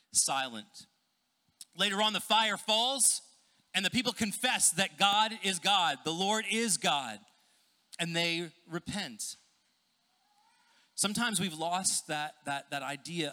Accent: American